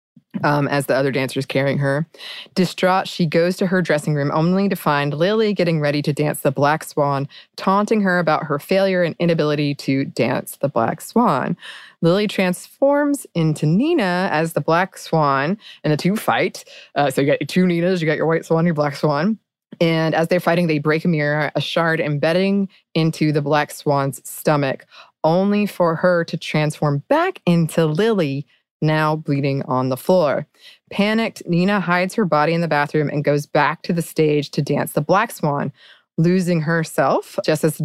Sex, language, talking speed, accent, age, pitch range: female, English, 185 wpm, American, 20-39, 145-185 Hz